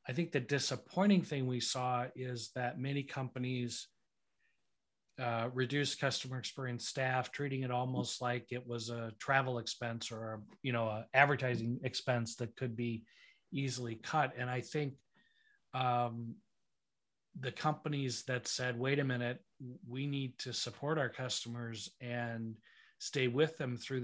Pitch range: 120-135 Hz